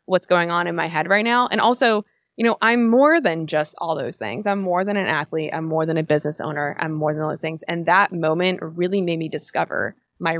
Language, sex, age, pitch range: English, female, 20-39, 170-205 Hz